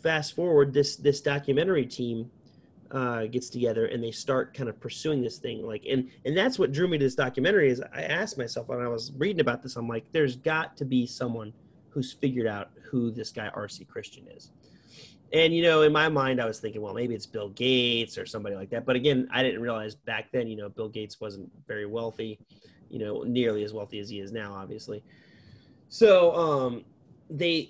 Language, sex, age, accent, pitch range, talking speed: English, male, 30-49, American, 115-150 Hz, 210 wpm